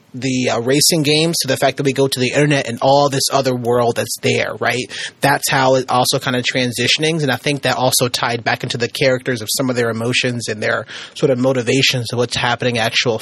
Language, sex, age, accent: English, male, 30-49, American